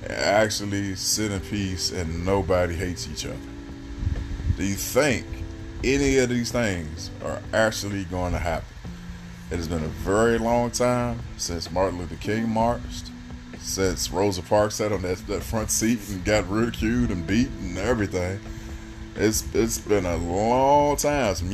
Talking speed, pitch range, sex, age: 155 wpm, 90-115 Hz, male, 20-39